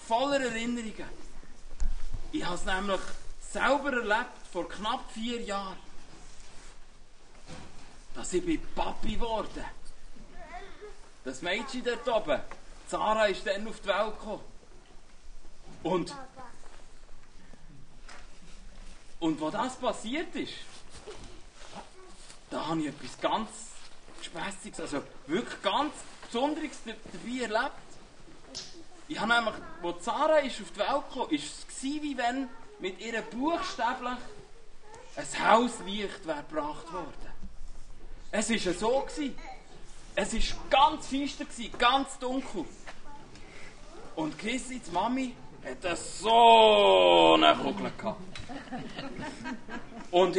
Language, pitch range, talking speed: German, 200-290 Hz, 100 wpm